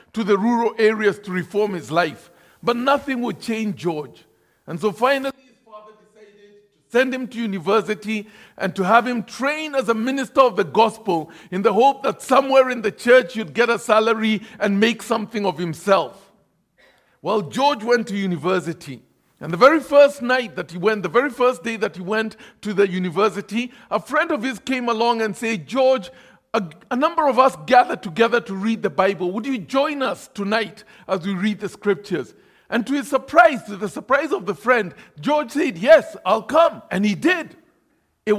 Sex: male